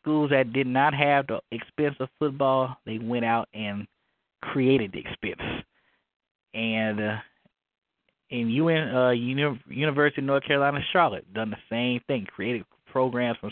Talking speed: 150 wpm